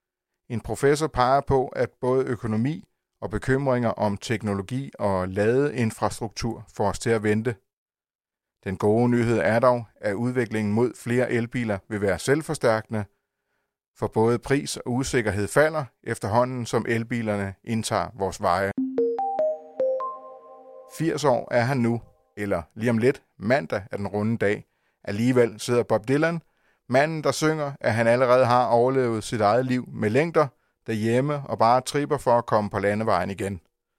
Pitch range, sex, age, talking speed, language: 105-130 Hz, male, 30-49, 150 wpm, Danish